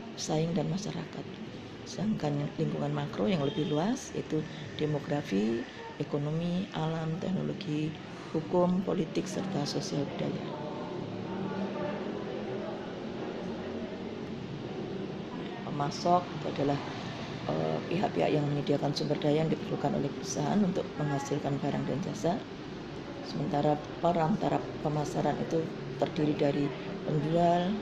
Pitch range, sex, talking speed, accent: 145-170 Hz, female, 90 wpm, native